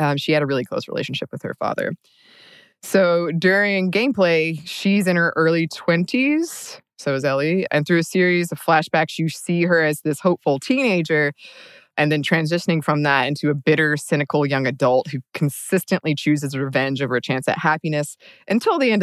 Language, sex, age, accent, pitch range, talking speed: English, female, 20-39, American, 145-175 Hz, 180 wpm